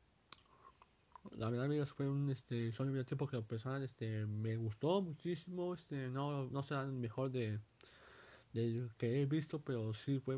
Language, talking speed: Spanish, 160 wpm